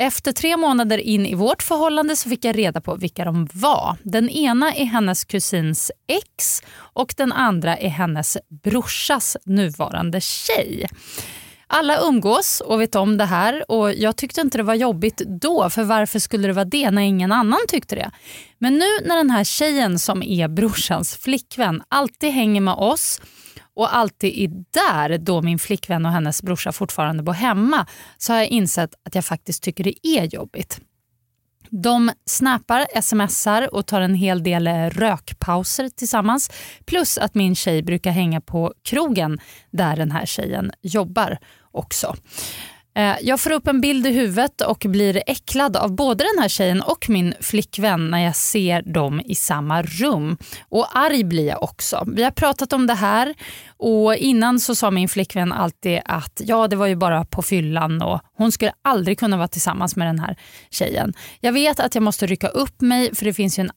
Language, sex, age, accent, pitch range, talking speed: English, female, 30-49, Swedish, 180-240 Hz, 180 wpm